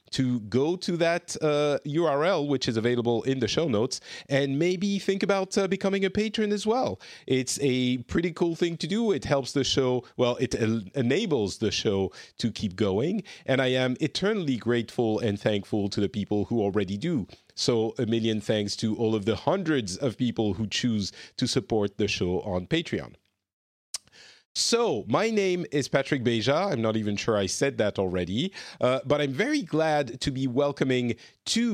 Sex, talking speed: male, 185 wpm